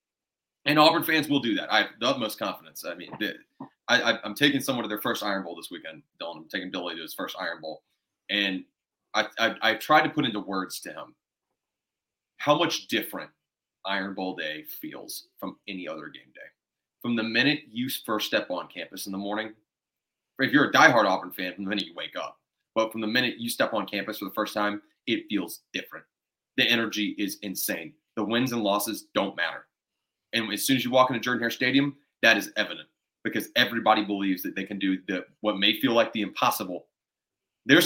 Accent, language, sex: American, English, male